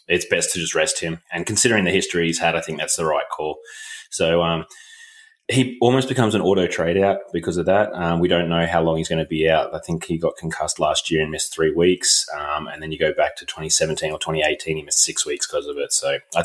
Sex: male